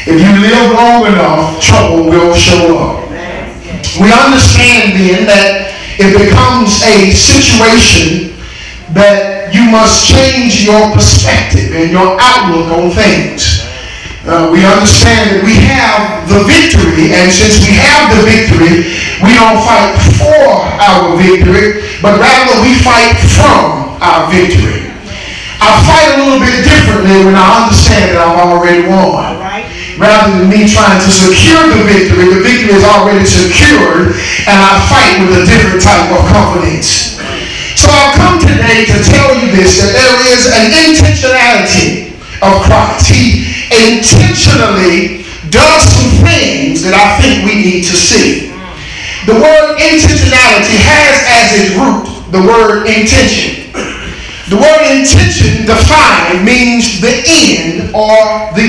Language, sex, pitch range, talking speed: English, male, 175-230 Hz, 140 wpm